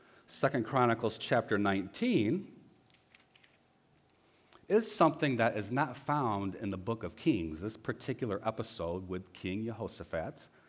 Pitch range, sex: 100-145 Hz, male